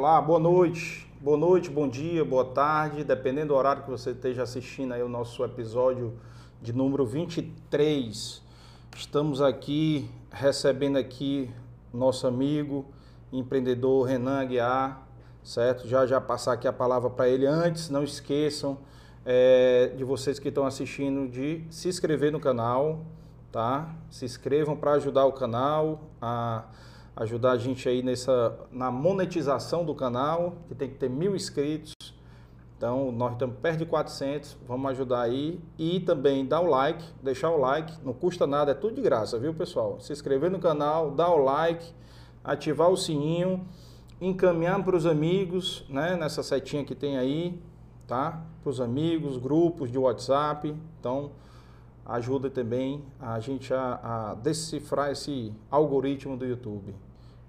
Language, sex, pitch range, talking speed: Portuguese, male, 125-155 Hz, 145 wpm